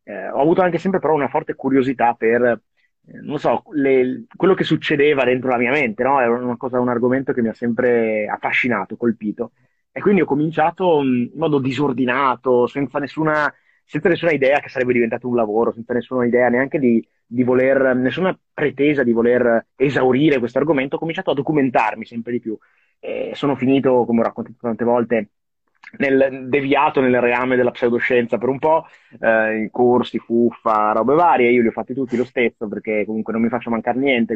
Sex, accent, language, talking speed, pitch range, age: male, native, Italian, 185 wpm, 115-135 Hz, 30-49